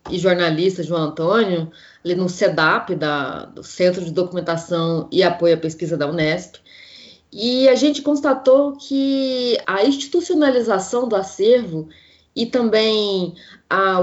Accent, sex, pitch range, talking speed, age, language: Brazilian, female, 175-265 Hz, 125 wpm, 20-39, Portuguese